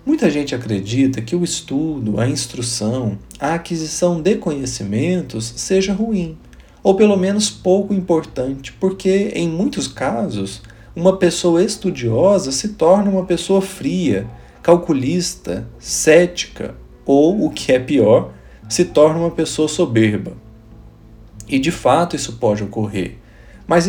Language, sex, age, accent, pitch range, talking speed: Portuguese, male, 40-59, Brazilian, 110-180 Hz, 125 wpm